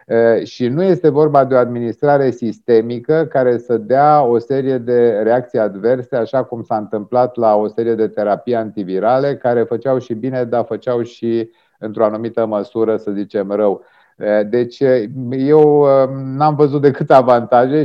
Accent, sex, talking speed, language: native, male, 150 wpm, Romanian